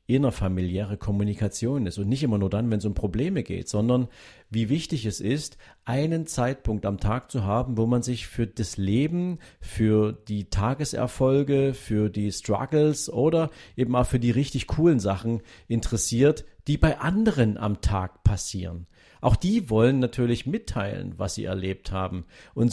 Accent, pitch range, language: German, 100-125 Hz, German